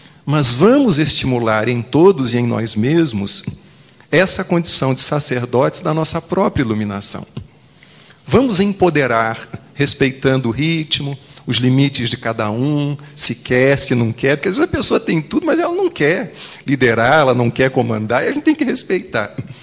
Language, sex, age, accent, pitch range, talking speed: Portuguese, male, 40-59, Brazilian, 120-160 Hz, 165 wpm